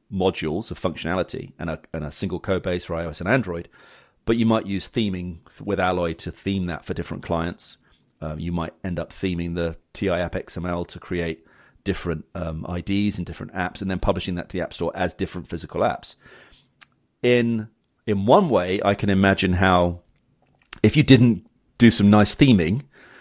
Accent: British